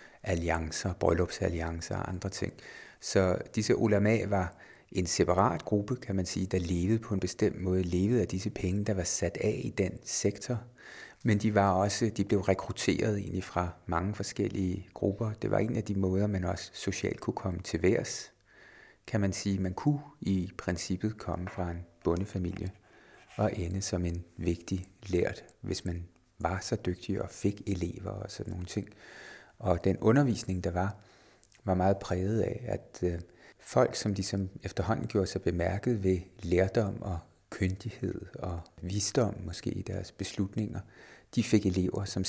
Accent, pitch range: native, 90-105 Hz